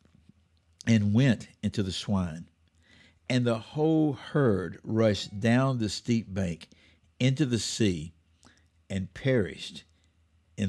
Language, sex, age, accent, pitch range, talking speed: English, male, 60-79, American, 85-125 Hz, 110 wpm